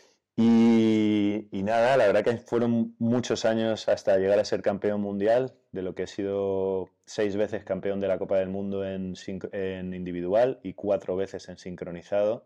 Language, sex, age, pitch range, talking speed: Spanish, male, 20-39, 90-105 Hz, 175 wpm